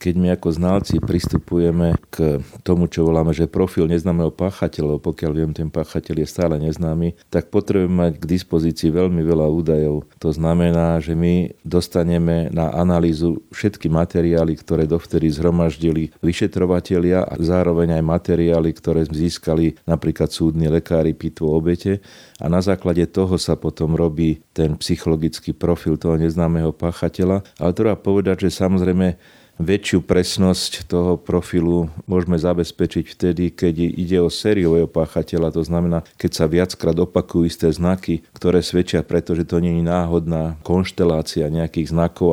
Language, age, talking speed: Slovak, 40-59, 140 wpm